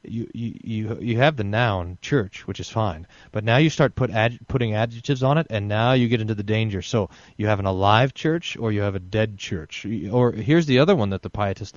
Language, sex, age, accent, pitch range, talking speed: English, male, 30-49, American, 100-145 Hz, 245 wpm